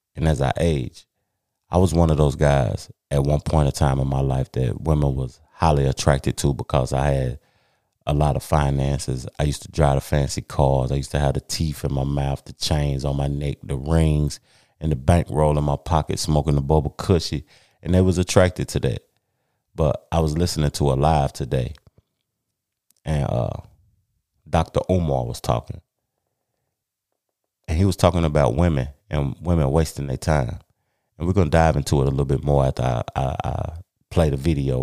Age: 30-49